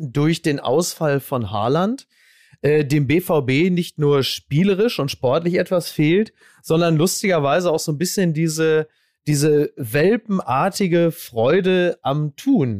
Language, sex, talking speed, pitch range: German, male, 125 wpm, 145-185 Hz